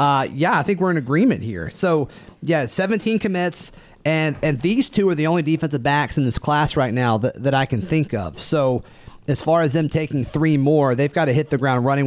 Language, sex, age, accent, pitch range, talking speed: English, male, 30-49, American, 125-155 Hz, 235 wpm